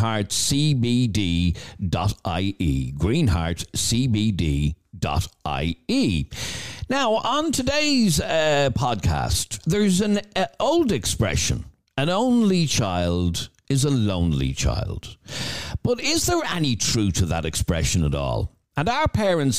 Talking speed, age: 100 wpm, 60-79